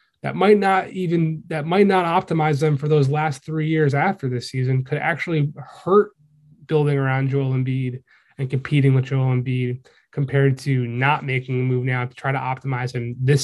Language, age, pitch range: English, 20-39, 130-150 Hz